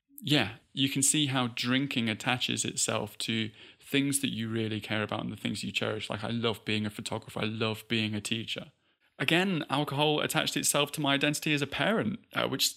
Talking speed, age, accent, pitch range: 200 wpm, 20-39, British, 110-125 Hz